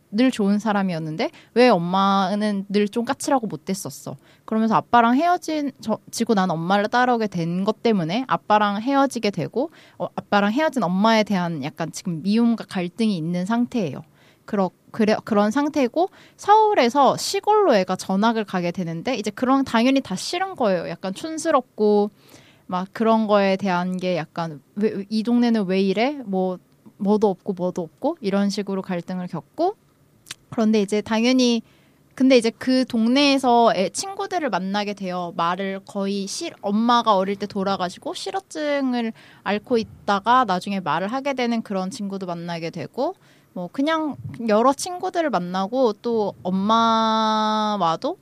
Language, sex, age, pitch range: Korean, female, 20-39, 185-245 Hz